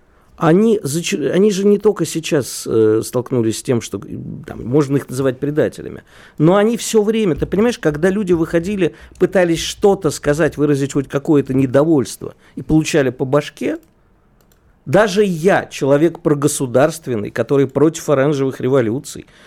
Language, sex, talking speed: Russian, male, 135 wpm